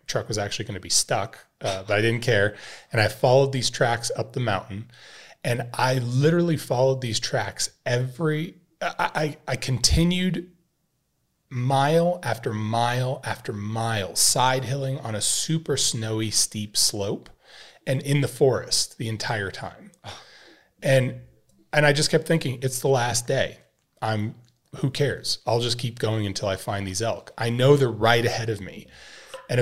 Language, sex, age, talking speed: English, male, 30-49, 165 wpm